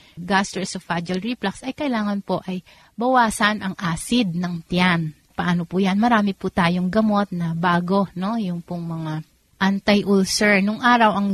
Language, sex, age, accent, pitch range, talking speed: Filipino, female, 30-49, native, 170-200 Hz, 150 wpm